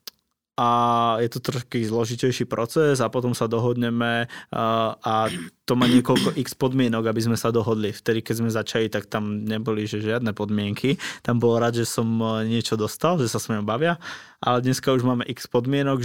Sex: male